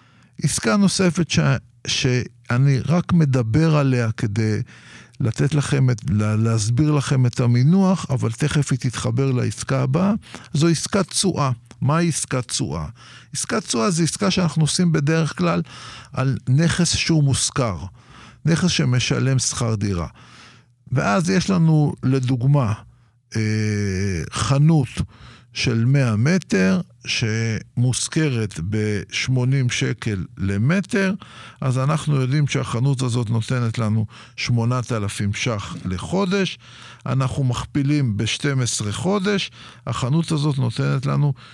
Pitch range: 120-160 Hz